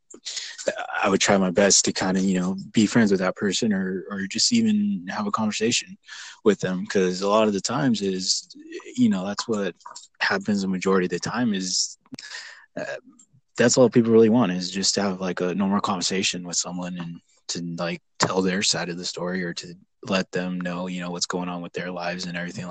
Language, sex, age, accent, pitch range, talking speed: English, male, 20-39, American, 90-105 Hz, 215 wpm